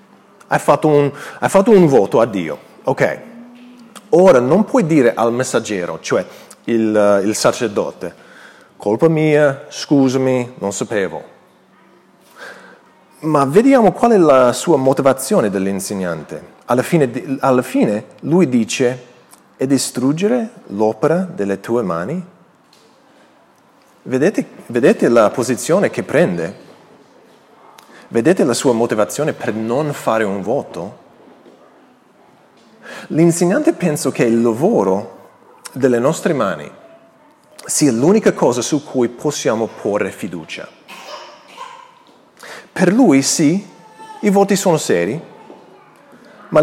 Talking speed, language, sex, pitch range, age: 105 wpm, Italian, male, 125-190 Hz, 30-49